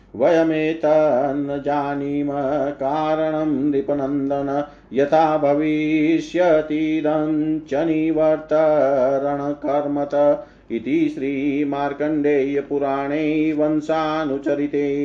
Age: 40-59